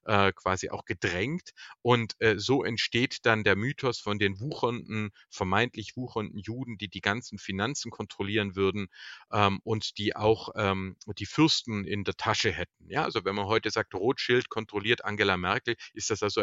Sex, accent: male, German